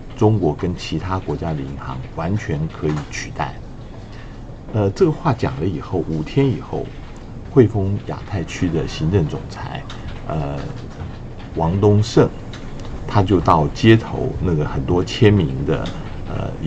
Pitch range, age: 95-130 Hz, 50-69